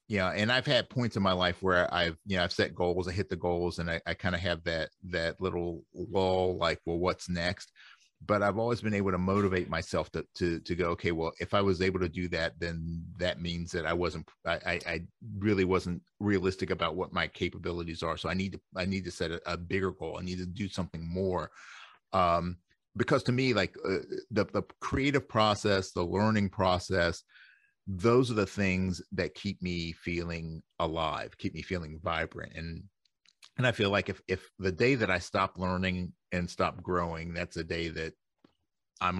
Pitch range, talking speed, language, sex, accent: 85-100 Hz, 205 wpm, English, male, American